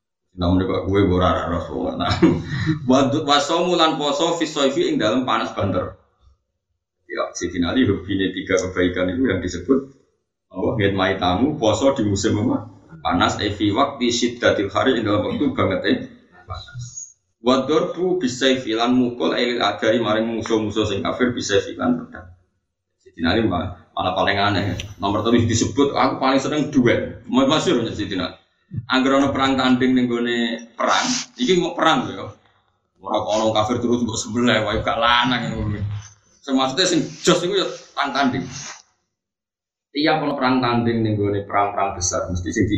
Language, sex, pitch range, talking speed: Indonesian, male, 100-140 Hz, 160 wpm